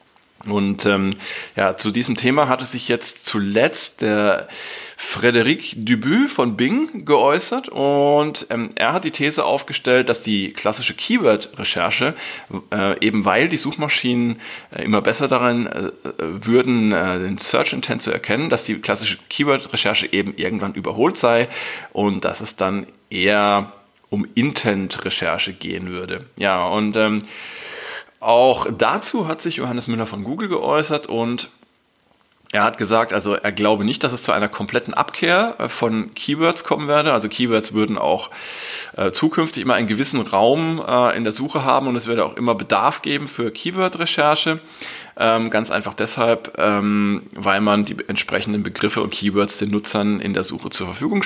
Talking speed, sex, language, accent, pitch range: 150 wpm, male, German, German, 105-140 Hz